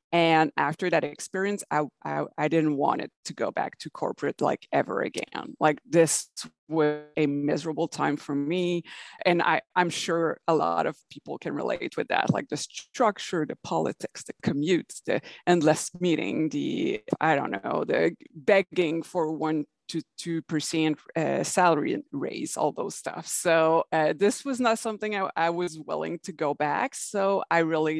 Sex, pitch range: female, 160-215 Hz